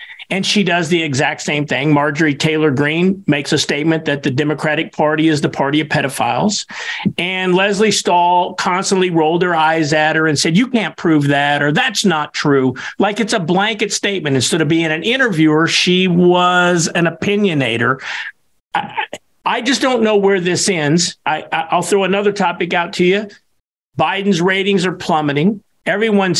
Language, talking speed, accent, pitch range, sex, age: English, 170 wpm, American, 160-205 Hz, male, 50-69